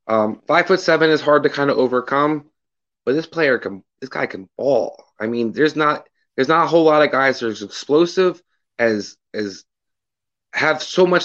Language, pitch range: English, 130-160 Hz